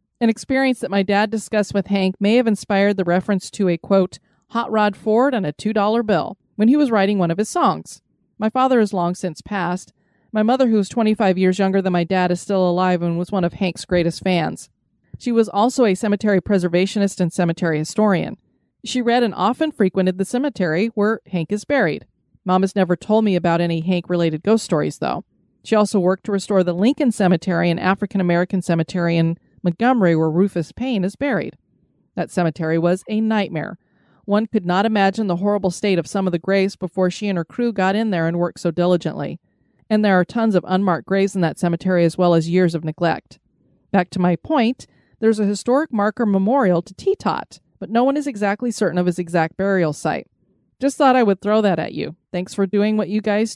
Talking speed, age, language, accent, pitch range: 210 wpm, 30-49, English, American, 175-215 Hz